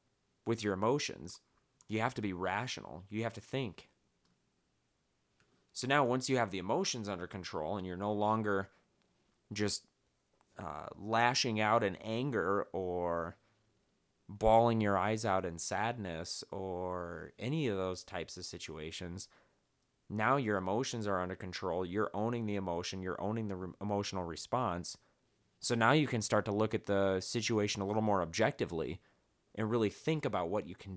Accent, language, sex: American, English, male